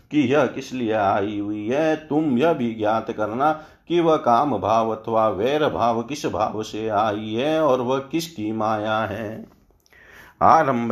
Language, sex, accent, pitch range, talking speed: Hindi, male, native, 110-130 Hz, 165 wpm